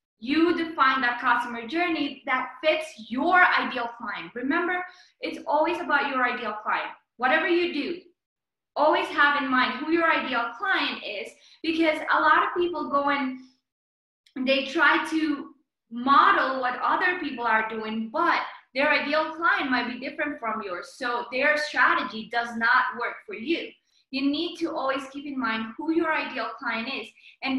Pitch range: 250-320 Hz